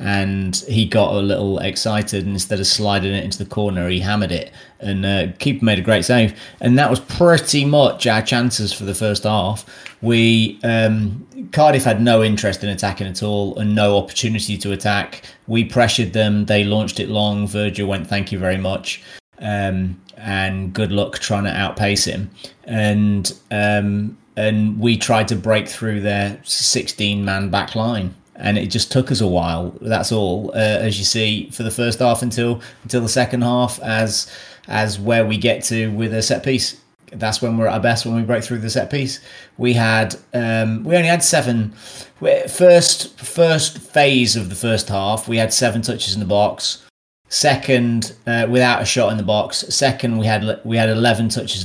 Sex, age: male, 30-49